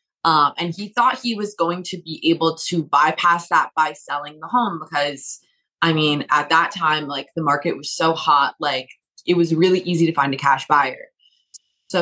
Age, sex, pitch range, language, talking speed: 20-39, female, 155-180 Hz, English, 200 wpm